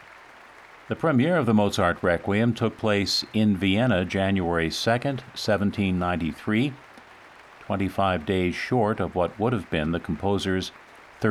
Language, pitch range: English, 85-105 Hz